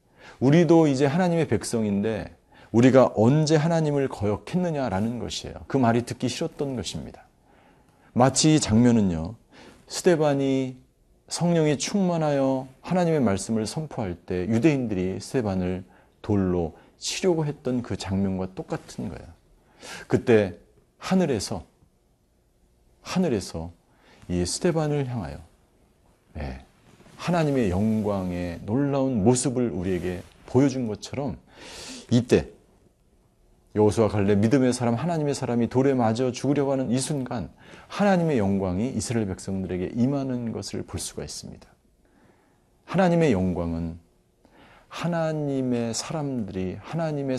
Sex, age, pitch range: male, 40-59, 90-140 Hz